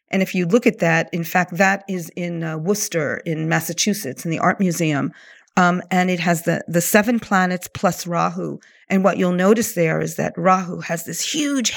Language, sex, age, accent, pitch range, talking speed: English, female, 50-69, American, 170-205 Hz, 205 wpm